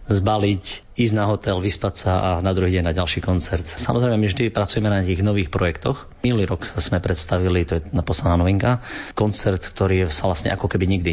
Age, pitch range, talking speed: 30-49, 85-100 Hz, 200 wpm